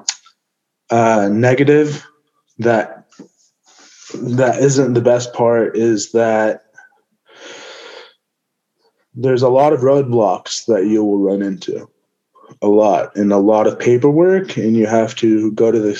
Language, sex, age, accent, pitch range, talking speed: English, male, 20-39, American, 115-145 Hz, 130 wpm